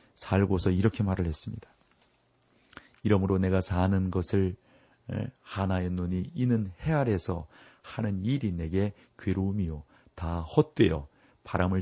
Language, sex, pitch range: Korean, male, 90-125 Hz